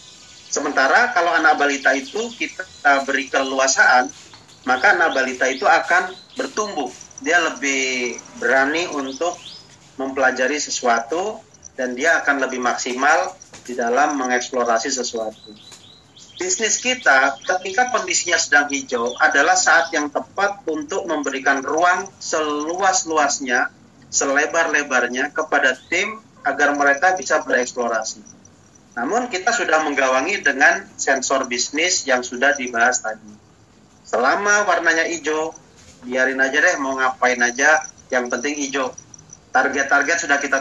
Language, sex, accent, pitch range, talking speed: English, male, Indonesian, 130-165 Hz, 110 wpm